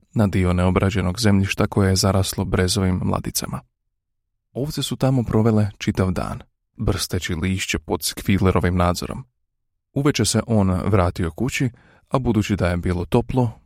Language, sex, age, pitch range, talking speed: Croatian, male, 30-49, 95-115 Hz, 135 wpm